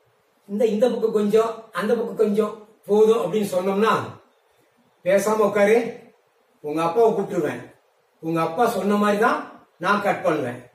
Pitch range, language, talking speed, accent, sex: 185-240 Hz, Tamil, 125 wpm, native, female